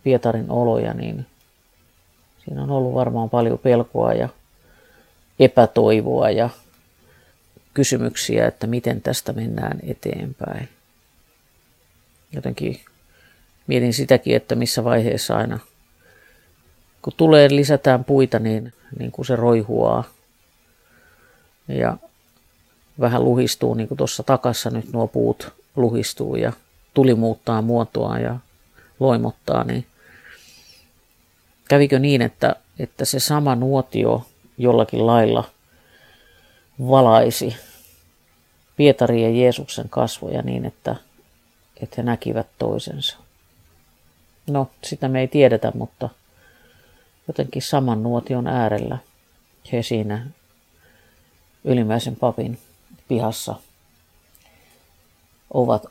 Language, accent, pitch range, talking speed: Finnish, native, 80-125 Hz, 95 wpm